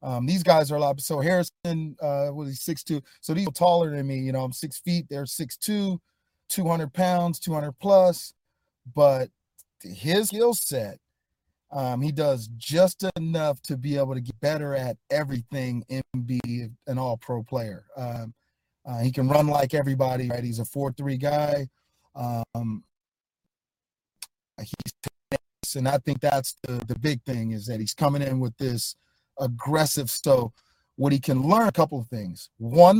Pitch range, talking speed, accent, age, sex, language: 125-155 Hz, 175 wpm, American, 30-49, male, English